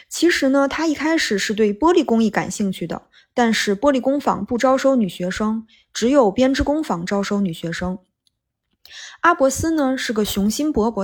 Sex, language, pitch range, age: female, Chinese, 205-285 Hz, 20-39